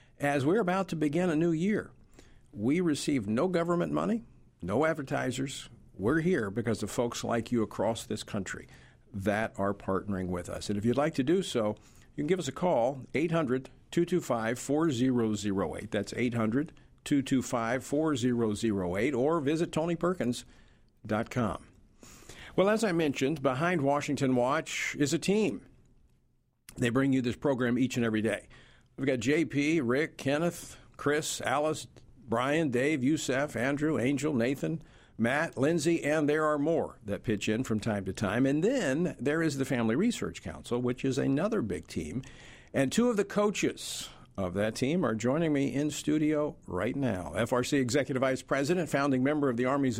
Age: 50-69